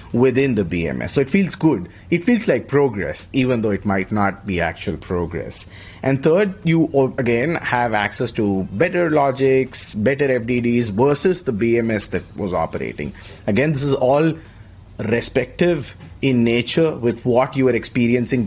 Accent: Indian